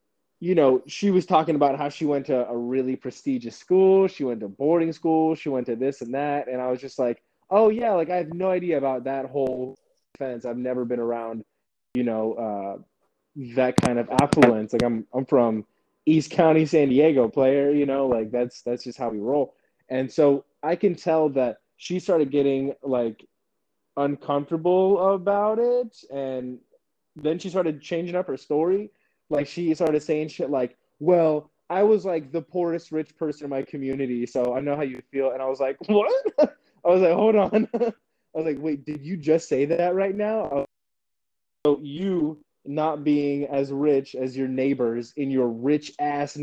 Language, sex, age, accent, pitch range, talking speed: English, male, 20-39, American, 130-170 Hz, 195 wpm